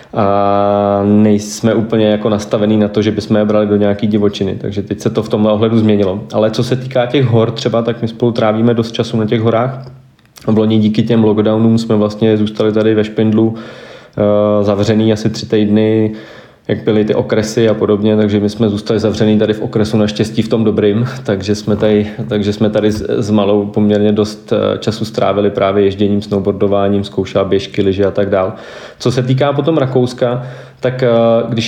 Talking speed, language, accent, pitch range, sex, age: 180 wpm, Czech, native, 105-120 Hz, male, 20-39